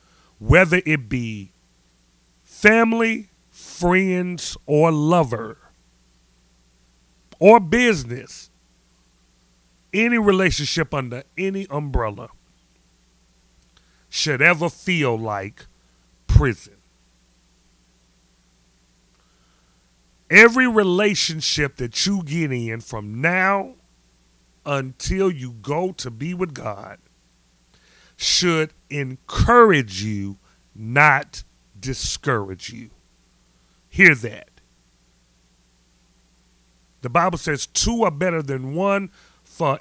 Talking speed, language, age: 75 wpm, English, 40-59